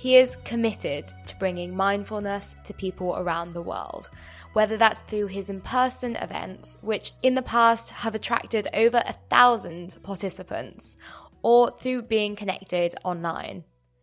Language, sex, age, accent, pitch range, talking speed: English, female, 20-39, British, 175-235 Hz, 135 wpm